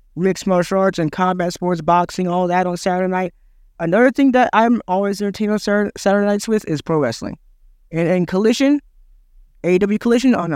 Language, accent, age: English, American, 20-39